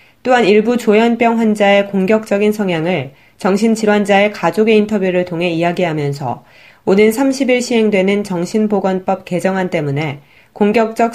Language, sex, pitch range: Korean, female, 170-220 Hz